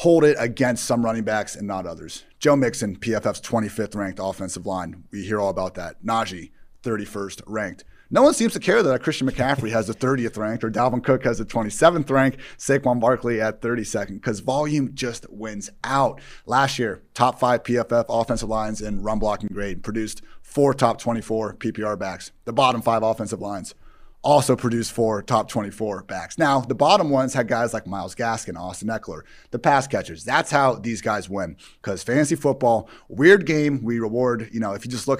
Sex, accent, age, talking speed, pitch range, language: male, American, 30-49, 195 wpm, 105-130 Hz, English